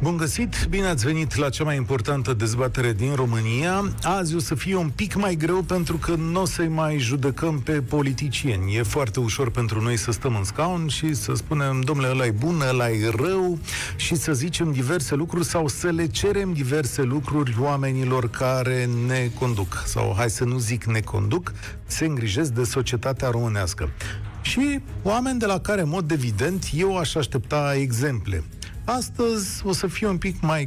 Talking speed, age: 180 wpm, 40-59